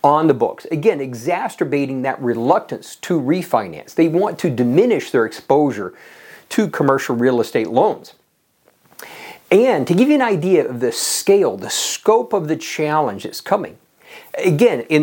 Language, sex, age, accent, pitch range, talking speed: English, male, 50-69, American, 150-255 Hz, 150 wpm